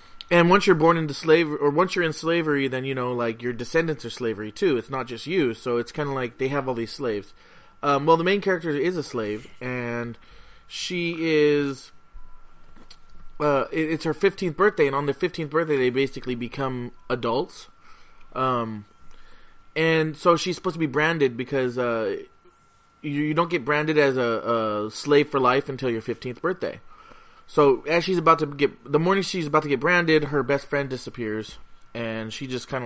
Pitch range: 125-160 Hz